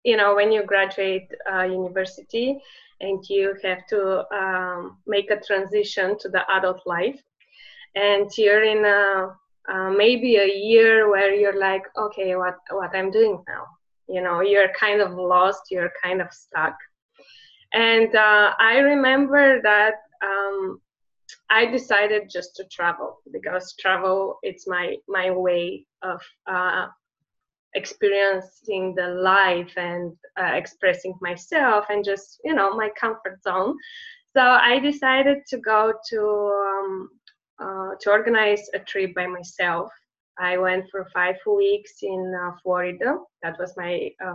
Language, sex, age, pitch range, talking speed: English, female, 20-39, 190-240 Hz, 140 wpm